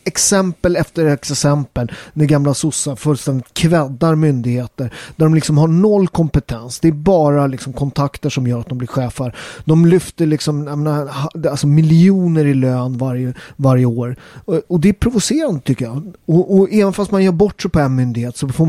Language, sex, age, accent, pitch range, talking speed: Swedish, male, 30-49, native, 130-165 Hz, 185 wpm